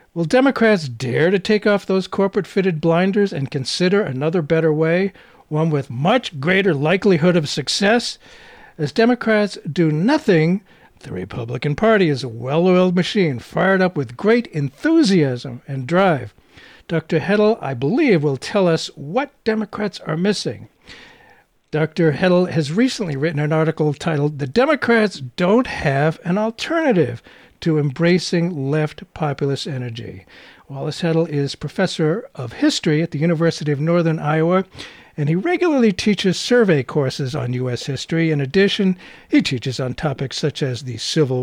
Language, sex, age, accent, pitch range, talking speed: English, male, 60-79, American, 145-195 Hz, 145 wpm